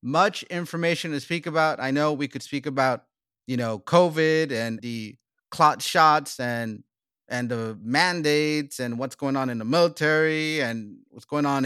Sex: male